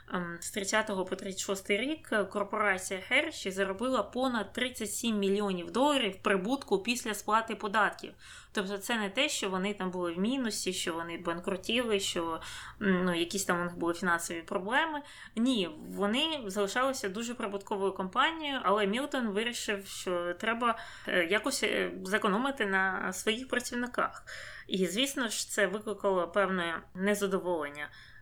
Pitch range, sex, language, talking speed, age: 185-225 Hz, female, Ukrainian, 130 wpm, 20-39